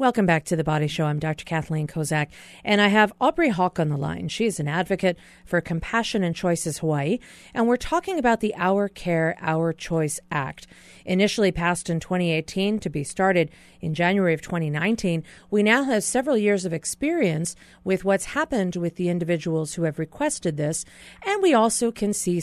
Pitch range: 165-205 Hz